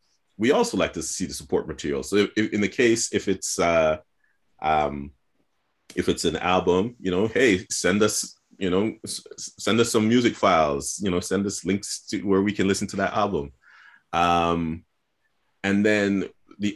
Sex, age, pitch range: male, 30-49, 80-100 Hz